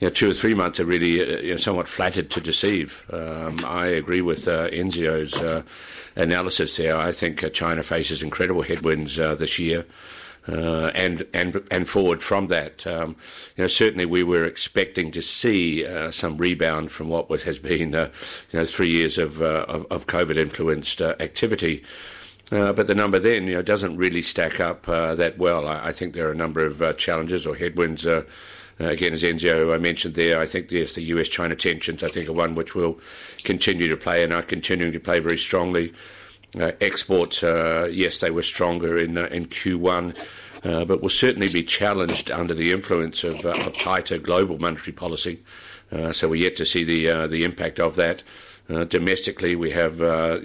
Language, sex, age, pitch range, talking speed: English, male, 50-69, 80-90 Hz, 205 wpm